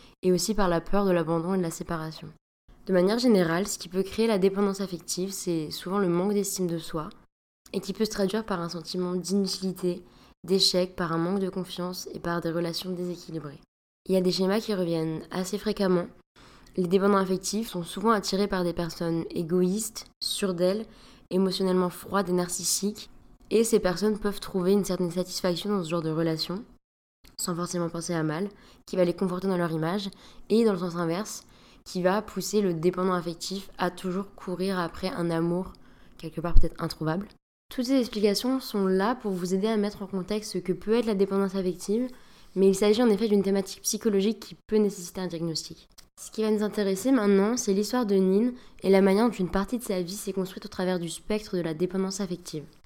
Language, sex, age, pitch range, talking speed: French, female, 20-39, 175-205 Hz, 205 wpm